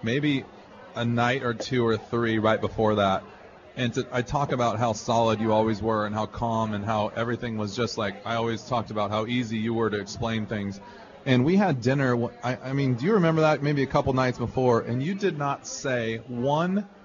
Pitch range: 110-135 Hz